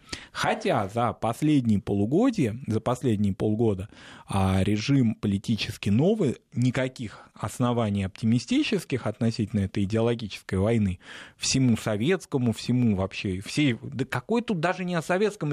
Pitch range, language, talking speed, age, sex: 110-145 Hz, Russian, 110 wpm, 20-39, male